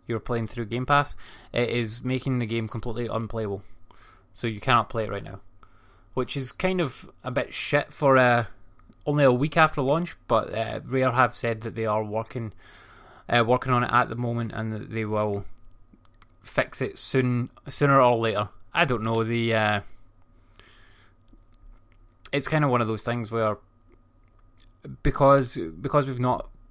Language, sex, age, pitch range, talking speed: English, male, 20-39, 105-130 Hz, 170 wpm